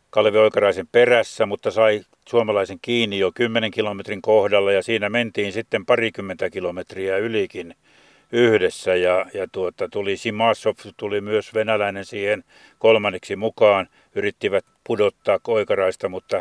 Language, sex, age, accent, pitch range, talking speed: Finnish, male, 50-69, native, 100-135 Hz, 125 wpm